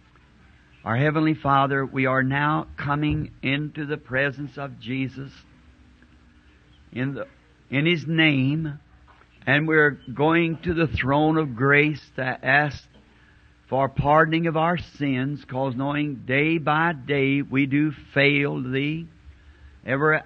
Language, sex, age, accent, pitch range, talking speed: English, male, 60-79, American, 120-150 Hz, 125 wpm